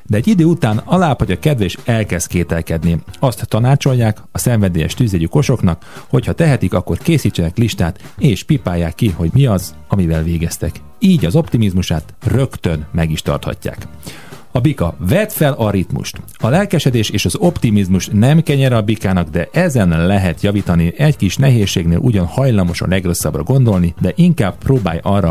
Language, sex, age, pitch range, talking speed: Hungarian, male, 40-59, 85-125 Hz, 155 wpm